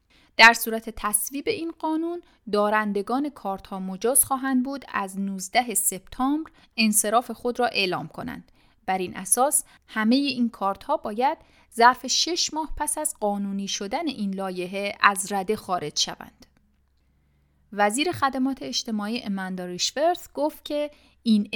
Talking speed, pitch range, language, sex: 130 wpm, 190-255 Hz, Persian, female